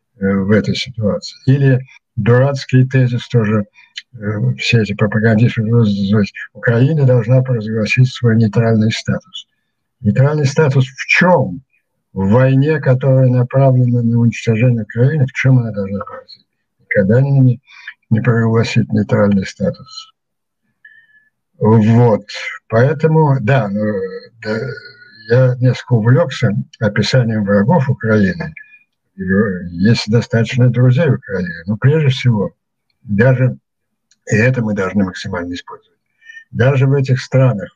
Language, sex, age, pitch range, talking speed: Ukrainian, male, 60-79, 105-130 Hz, 110 wpm